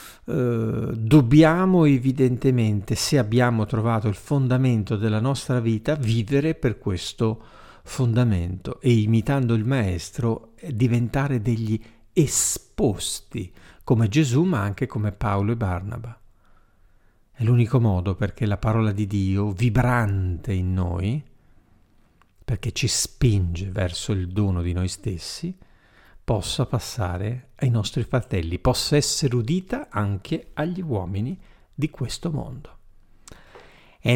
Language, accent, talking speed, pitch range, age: Italian, native, 110 wpm, 100-130 Hz, 50-69